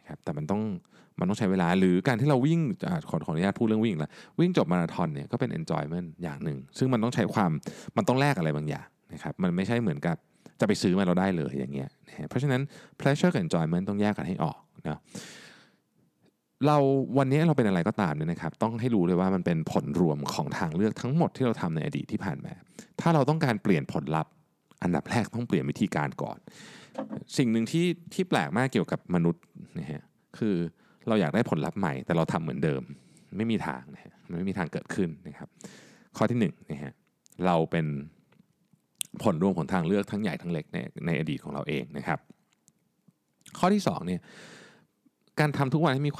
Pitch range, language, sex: 90-150 Hz, Thai, male